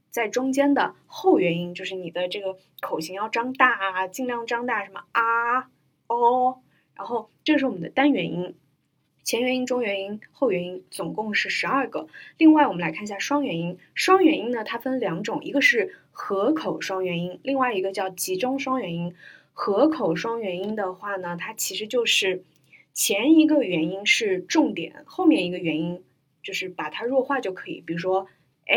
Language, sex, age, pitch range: Chinese, female, 20-39, 185-285 Hz